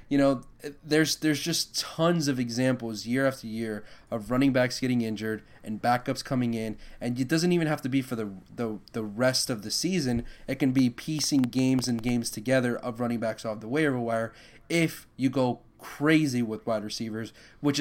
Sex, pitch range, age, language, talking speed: male, 115-135 Hz, 30-49, English, 195 wpm